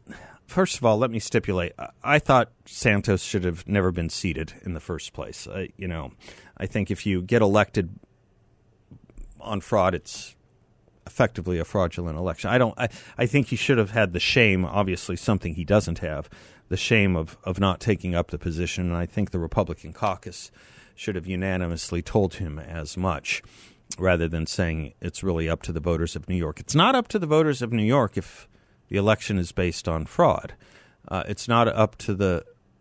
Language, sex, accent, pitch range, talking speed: English, male, American, 85-110 Hz, 195 wpm